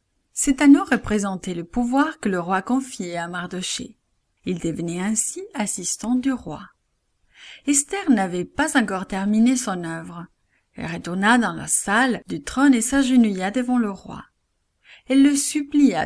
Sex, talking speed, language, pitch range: female, 145 wpm, English, 185-260 Hz